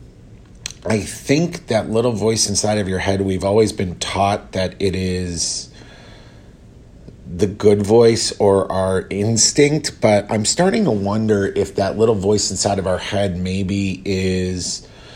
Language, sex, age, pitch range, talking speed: English, male, 30-49, 95-115 Hz, 145 wpm